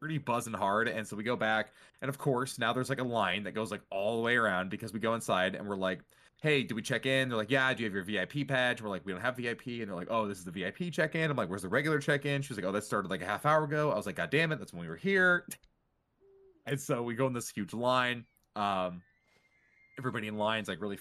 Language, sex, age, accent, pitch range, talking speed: English, male, 20-39, American, 95-125 Hz, 290 wpm